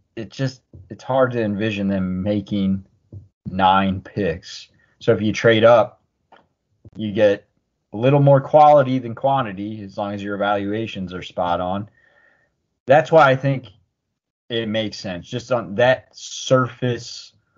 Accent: American